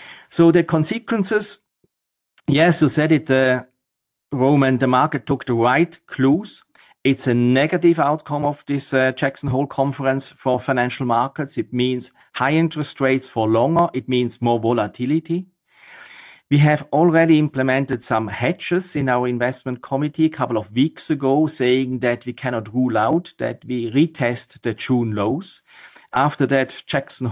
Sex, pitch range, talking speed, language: male, 125-145 Hz, 150 wpm, English